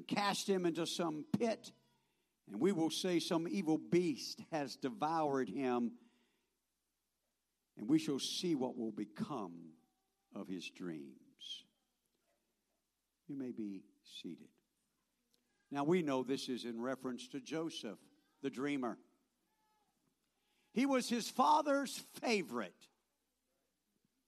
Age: 60-79